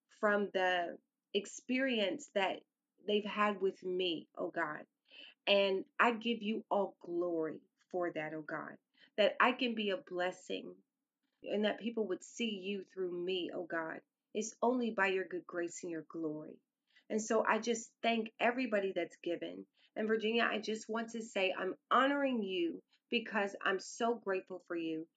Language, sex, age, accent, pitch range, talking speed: English, female, 30-49, American, 185-230 Hz, 165 wpm